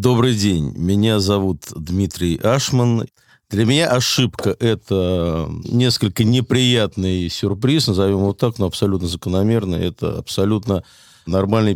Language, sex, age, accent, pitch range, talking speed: Russian, male, 50-69, native, 85-110 Hz, 110 wpm